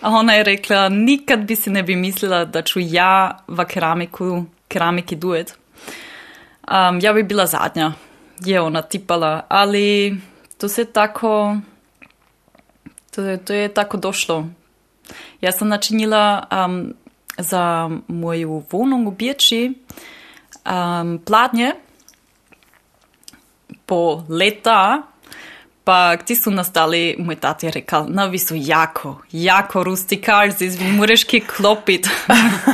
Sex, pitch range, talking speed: female, 175-225 Hz, 105 wpm